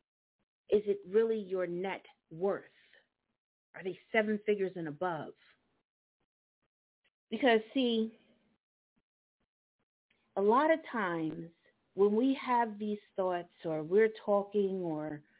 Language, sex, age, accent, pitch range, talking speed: English, female, 40-59, American, 185-230 Hz, 105 wpm